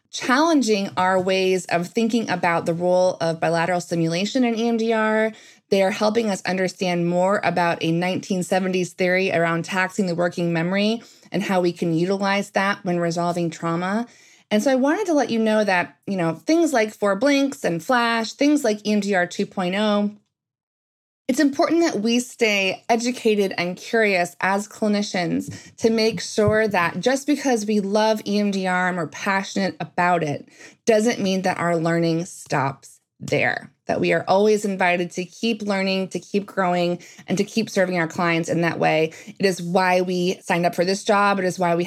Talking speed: 175 wpm